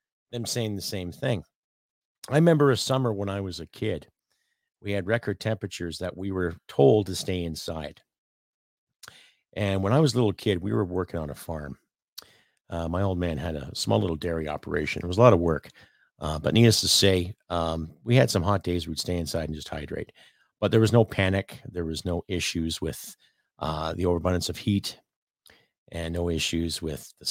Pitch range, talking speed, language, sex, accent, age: 85-115 Hz, 200 wpm, English, male, American, 50-69